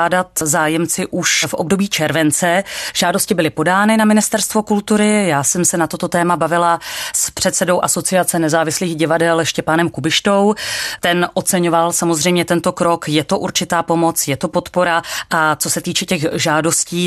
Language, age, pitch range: Czech, 30-49, 155-180 Hz